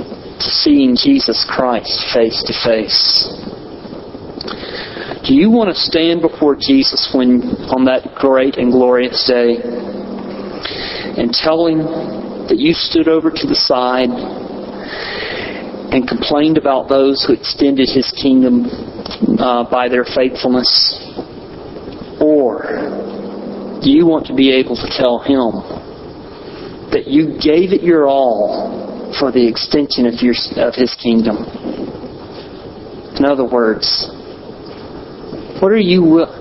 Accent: American